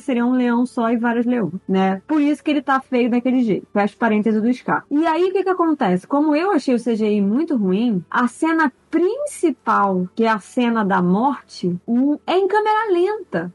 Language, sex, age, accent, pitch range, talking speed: Portuguese, female, 20-39, Brazilian, 225-305 Hz, 210 wpm